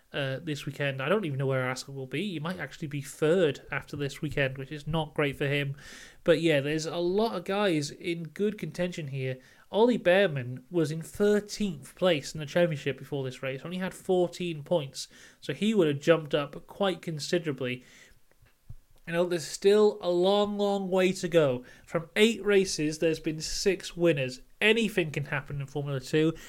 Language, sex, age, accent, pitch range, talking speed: English, male, 30-49, British, 140-180 Hz, 190 wpm